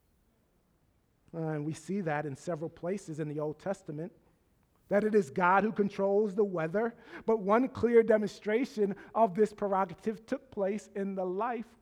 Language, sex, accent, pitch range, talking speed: English, male, American, 180-230 Hz, 160 wpm